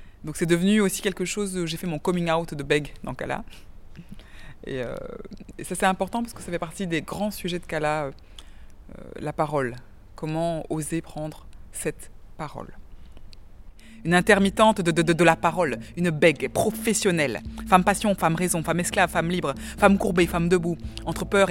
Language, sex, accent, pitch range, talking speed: French, female, French, 140-185 Hz, 180 wpm